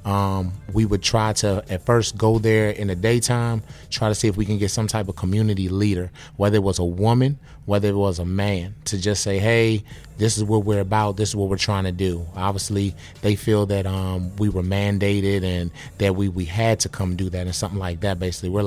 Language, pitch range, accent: English, 95-110 Hz, American